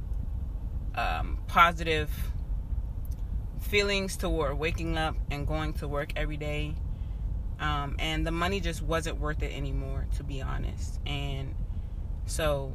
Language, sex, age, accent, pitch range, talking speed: English, female, 20-39, American, 75-100 Hz, 120 wpm